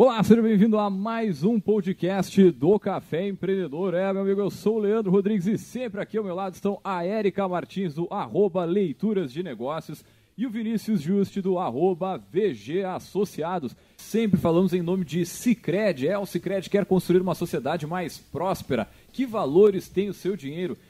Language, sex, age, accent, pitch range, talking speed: Portuguese, male, 30-49, Brazilian, 175-200 Hz, 170 wpm